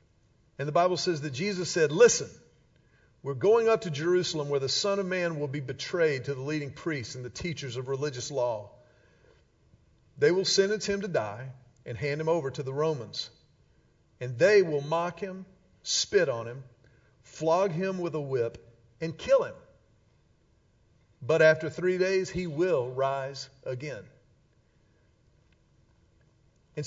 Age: 50-69